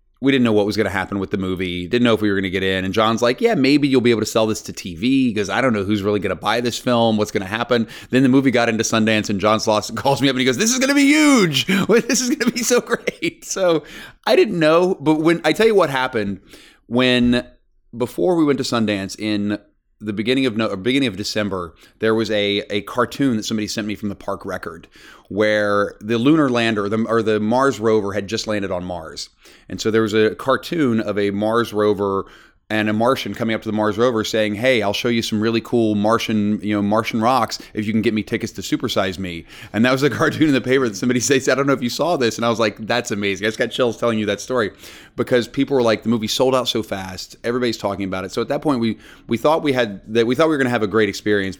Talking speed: 270 wpm